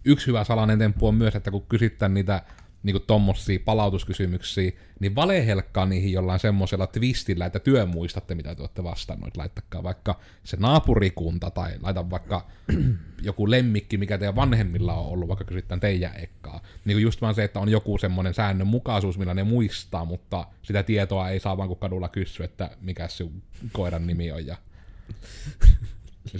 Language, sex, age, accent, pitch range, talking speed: Finnish, male, 30-49, native, 90-110 Hz, 165 wpm